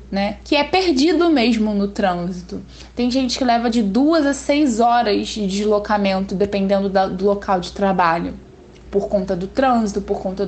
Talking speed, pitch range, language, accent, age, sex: 165 wpm, 200-270 Hz, Portuguese, Brazilian, 10-29, female